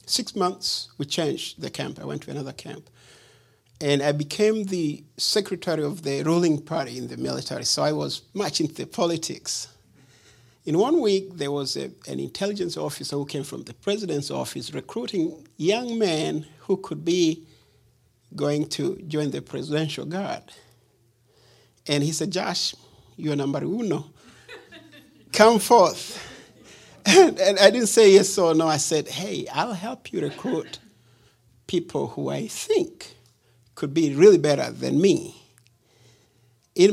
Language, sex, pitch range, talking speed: English, male, 125-190 Hz, 150 wpm